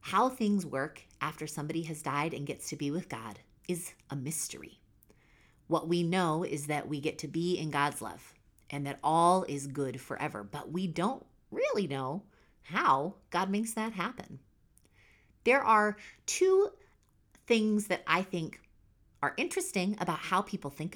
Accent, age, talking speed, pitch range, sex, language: American, 30-49, 165 wpm, 135-185 Hz, female, English